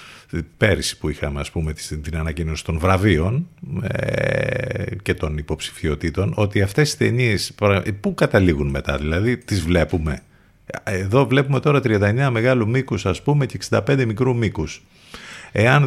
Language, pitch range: Greek, 85-125 Hz